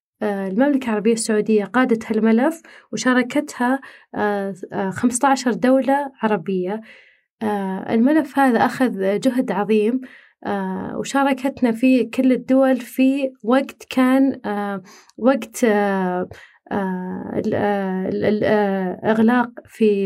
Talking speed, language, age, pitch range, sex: 70 wpm, Arabic, 30-49, 210-260 Hz, female